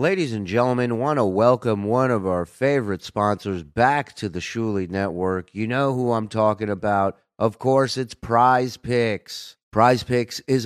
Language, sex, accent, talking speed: English, male, American, 175 wpm